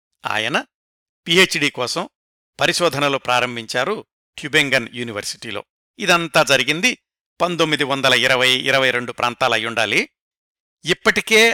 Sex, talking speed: male, 85 wpm